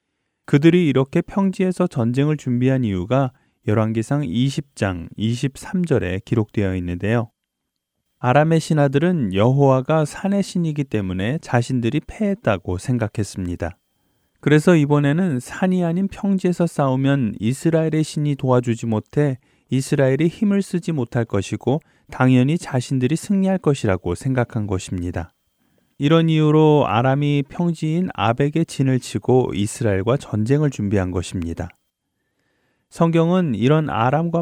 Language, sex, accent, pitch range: Korean, male, native, 110-155 Hz